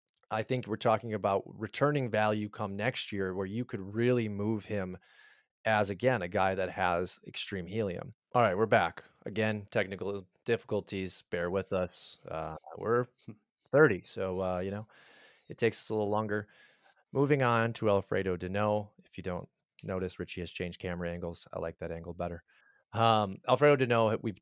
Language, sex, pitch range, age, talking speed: English, male, 95-115 Hz, 30-49, 170 wpm